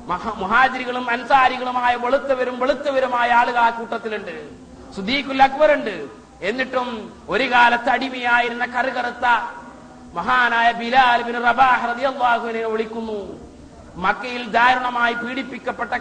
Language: Malayalam